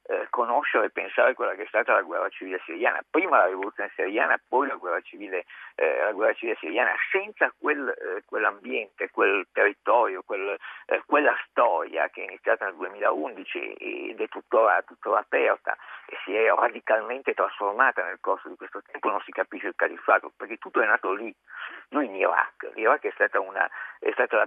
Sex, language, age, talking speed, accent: male, Italian, 50-69, 175 wpm, native